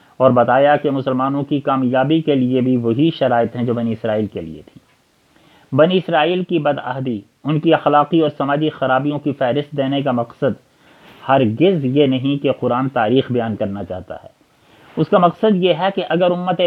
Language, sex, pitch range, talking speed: Urdu, male, 120-155 Hz, 185 wpm